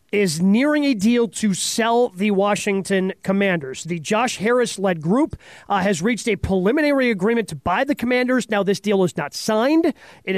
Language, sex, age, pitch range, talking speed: English, male, 30-49, 190-230 Hz, 180 wpm